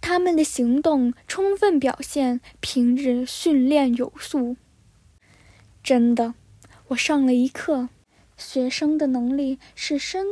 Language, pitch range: Chinese, 250-325 Hz